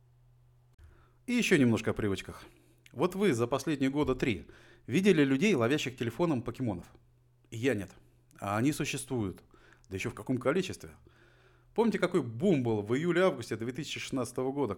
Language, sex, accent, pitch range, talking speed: Russian, male, native, 115-140 Hz, 140 wpm